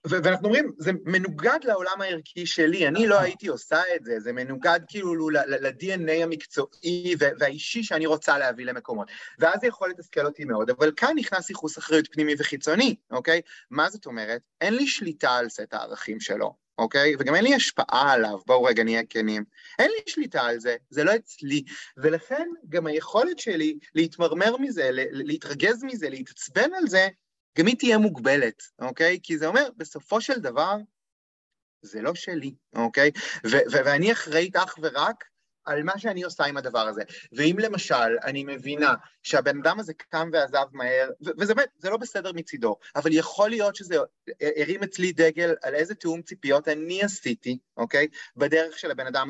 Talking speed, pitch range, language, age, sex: 170 wpm, 150-215 Hz, Hebrew, 30-49, male